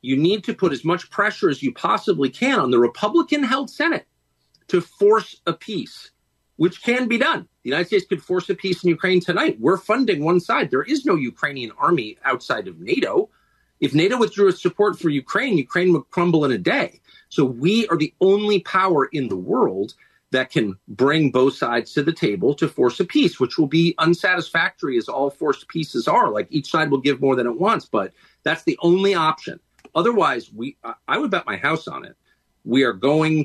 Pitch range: 145-210 Hz